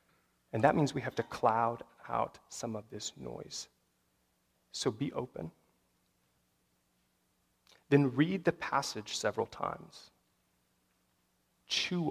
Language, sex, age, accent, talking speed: English, male, 30-49, American, 110 wpm